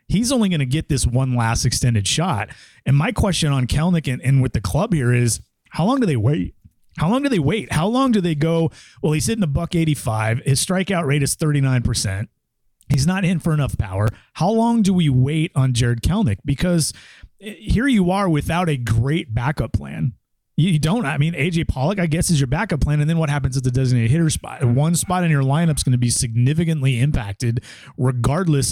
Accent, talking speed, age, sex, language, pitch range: American, 215 wpm, 30-49, male, English, 120-165 Hz